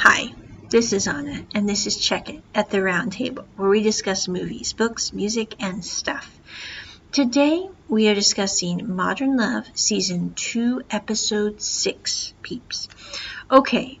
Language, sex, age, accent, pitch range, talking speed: English, female, 50-69, American, 190-240 Hz, 135 wpm